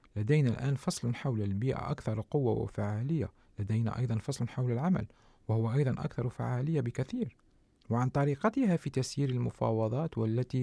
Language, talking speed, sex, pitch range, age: Arabic, 135 wpm, male, 110-140 Hz, 40-59